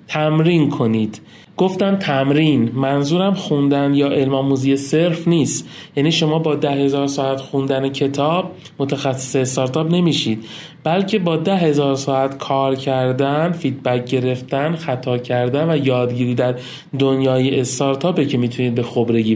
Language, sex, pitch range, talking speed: Persian, male, 130-160 Hz, 130 wpm